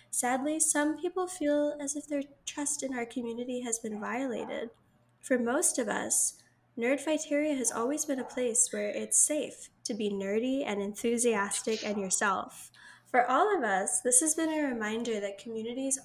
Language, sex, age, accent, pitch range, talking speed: English, female, 10-29, American, 210-275 Hz, 170 wpm